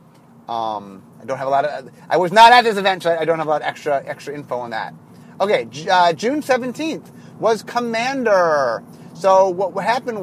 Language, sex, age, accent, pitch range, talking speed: English, male, 30-49, American, 155-220 Hz, 200 wpm